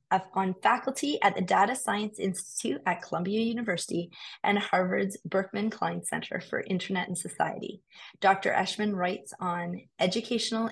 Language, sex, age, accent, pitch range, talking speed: English, female, 30-49, American, 180-210 Hz, 135 wpm